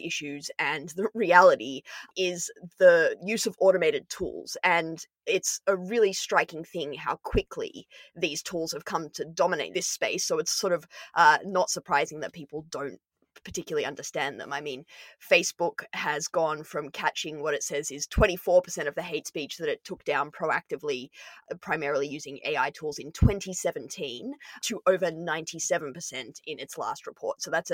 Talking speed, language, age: 160 wpm, English, 20-39